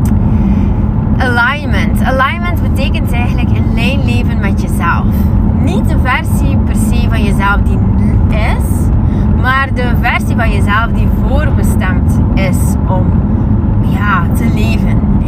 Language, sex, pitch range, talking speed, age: Dutch, female, 100-105 Hz, 115 wpm, 20-39